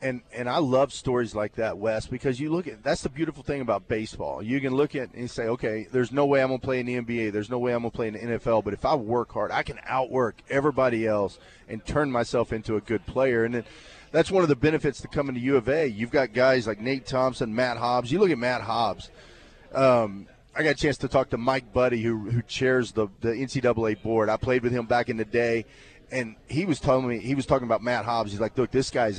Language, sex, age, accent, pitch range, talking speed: English, male, 30-49, American, 115-135 Hz, 260 wpm